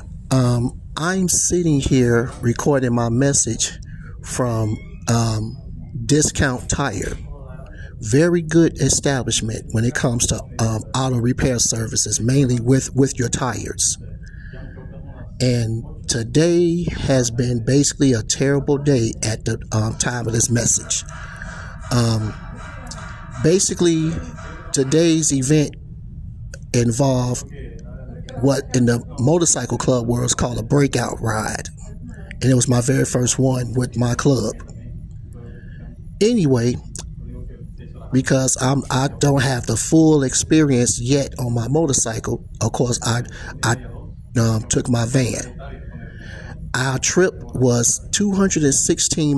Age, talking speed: 50-69, 110 wpm